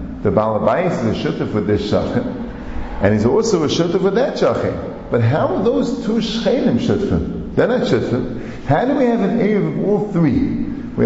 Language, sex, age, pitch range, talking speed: English, male, 50-69, 135-225 Hz, 195 wpm